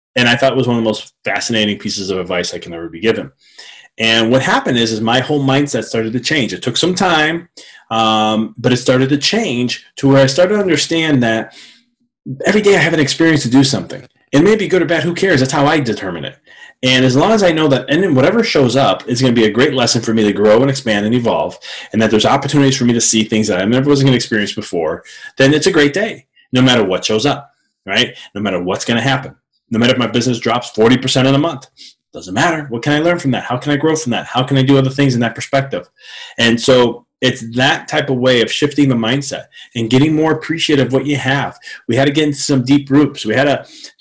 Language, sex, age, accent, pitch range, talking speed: English, male, 30-49, American, 115-145 Hz, 260 wpm